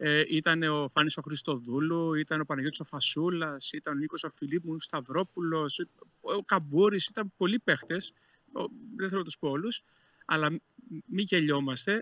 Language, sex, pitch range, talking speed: Greek, male, 150-185 Hz, 155 wpm